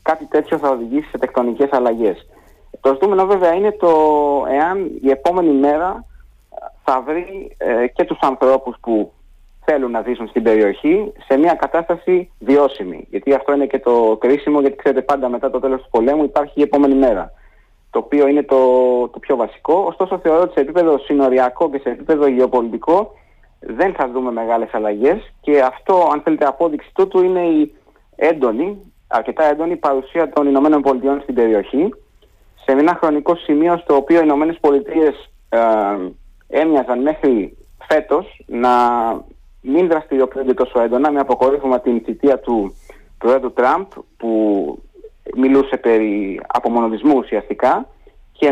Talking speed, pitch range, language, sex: 145 wpm, 125-160 Hz, Greek, male